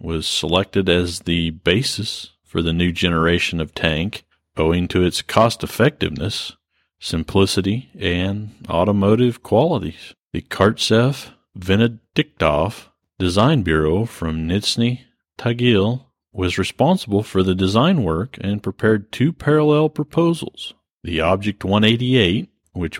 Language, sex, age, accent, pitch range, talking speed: English, male, 50-69, American, 90-120 Hz, 105 wpm